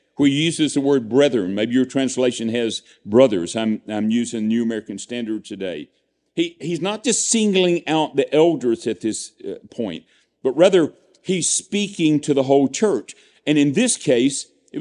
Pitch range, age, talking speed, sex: 130-190 Hz, 50-69, 170 wpm, male